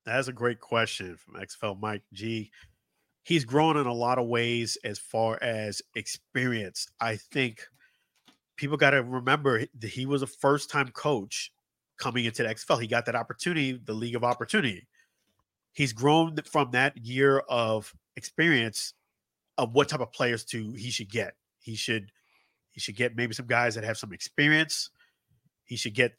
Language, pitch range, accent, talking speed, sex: English, 115-140 Hz, American, 170 wpm, male